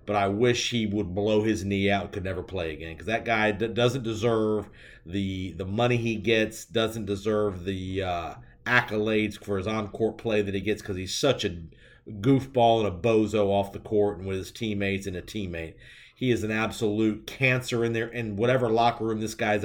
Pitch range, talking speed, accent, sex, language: 105-130 Hz, 210 wpm, American, male, English